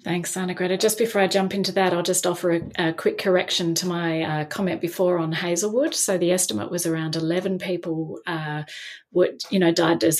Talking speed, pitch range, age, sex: 210 wpm, 165-210 Hz, 30-49, female